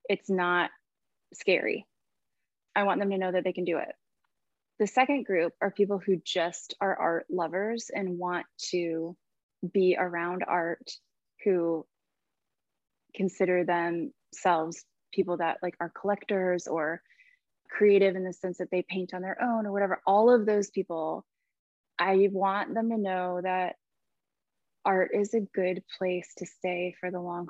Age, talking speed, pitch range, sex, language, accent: 20-39, 155 wpm, 180-200 Hz, female, English, American